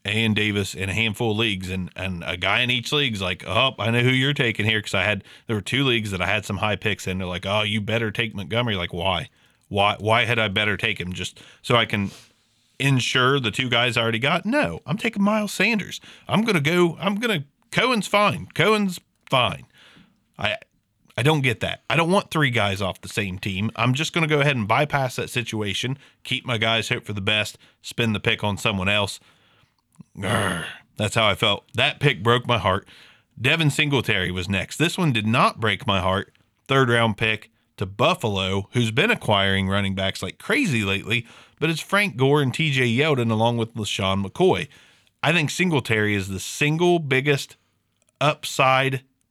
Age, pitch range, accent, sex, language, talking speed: 30-49, 105-135 Hz, American, male, English, 200 wpm